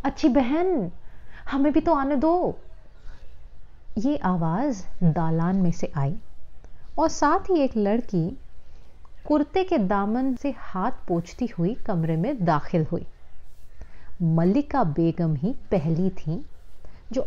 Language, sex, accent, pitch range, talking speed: Hindi, female, native, 175-275 Hz, 120 wpm